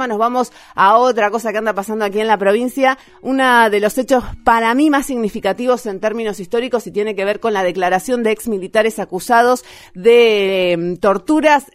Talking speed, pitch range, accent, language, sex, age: 190 wpm, 190-240 Hz, Argentinian, Spanish, female, 30-49